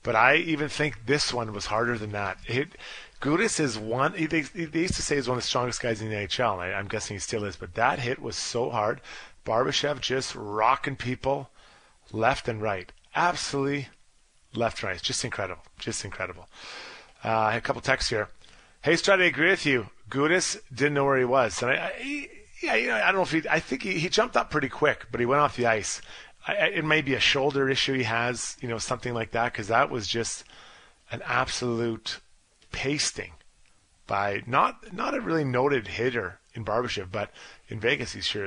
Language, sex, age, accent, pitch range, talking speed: English, male, 30-49, American, 110-150 Hz, 210 wpm